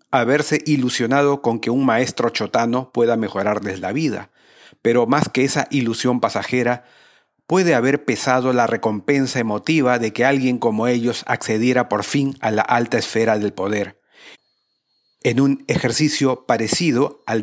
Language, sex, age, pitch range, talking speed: Spanish, male, 40-59, 115-140 Hz, 145 wpm